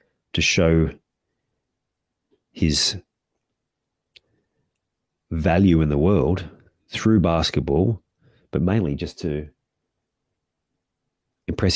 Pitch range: 75-95 Hz